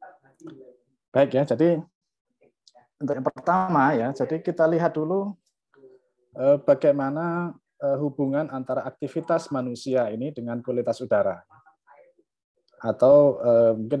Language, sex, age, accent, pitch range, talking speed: Indonesian, male, 20-39, native, 110-145 Hz, 95 wpm